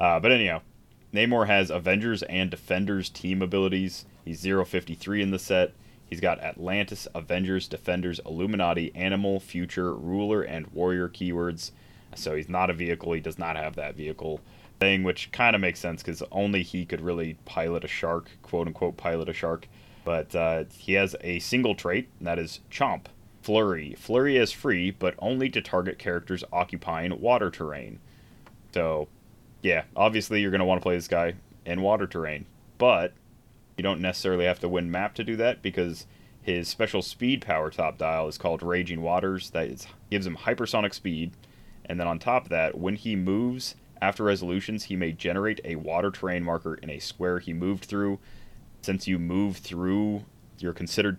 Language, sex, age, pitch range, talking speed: English, male, 30-49, 85-100 Hz, 175 wpm